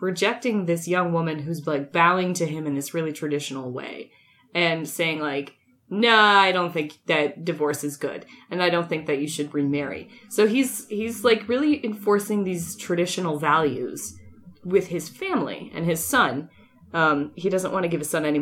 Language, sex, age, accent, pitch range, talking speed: English, female, 20-39, American, 155-220 Hz, 190 wpm